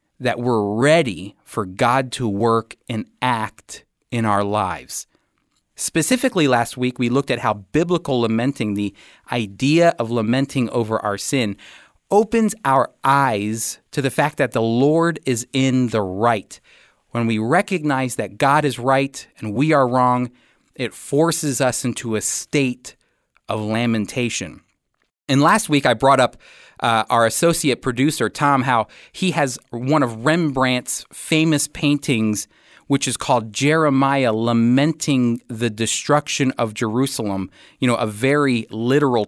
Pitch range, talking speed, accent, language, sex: 115-150 Hz, 140 wpm, American, English, male